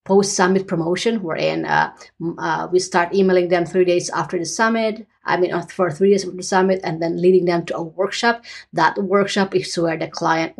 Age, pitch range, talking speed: 30-49, 170-195 Hz, 200 wpm